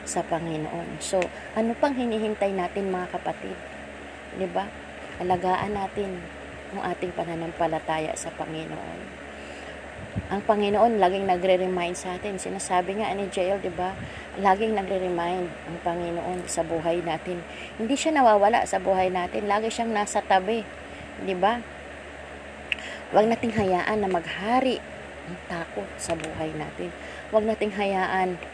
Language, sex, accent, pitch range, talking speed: Filipino, female, native, 160-205 Hz, 130 wpm